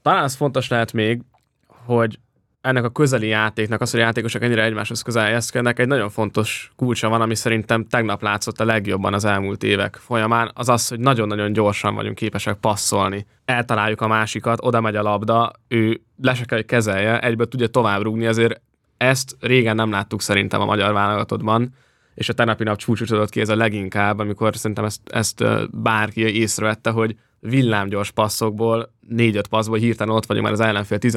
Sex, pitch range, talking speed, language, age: male, 105-115 Hz, 175 wpm, English, 10-29